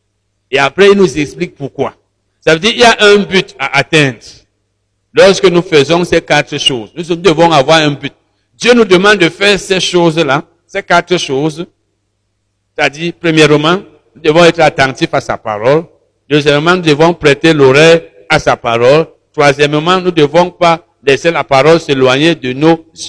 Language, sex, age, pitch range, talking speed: French, male, 60-79, 130-175 Hz, 165 wpm